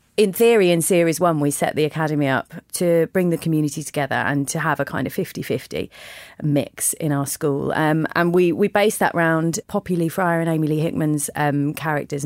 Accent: British